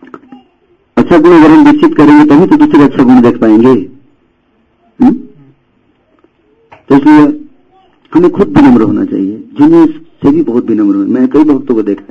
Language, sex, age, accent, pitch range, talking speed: Hindi, male, 50-69, native, 270-310 Hz, 150 wpm